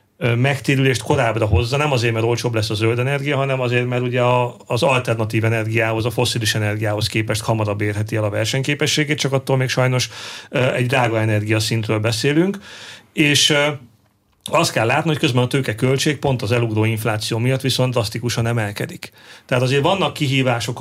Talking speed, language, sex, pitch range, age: 160 wpm, Hungarian, male, 115-135 Hz, 40-59